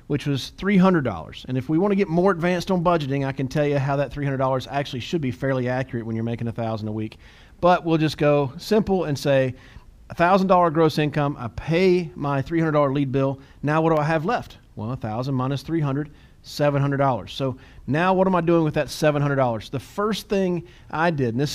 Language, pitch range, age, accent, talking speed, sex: English, 135-175 Hz, 40-59, American, 250 wpm, male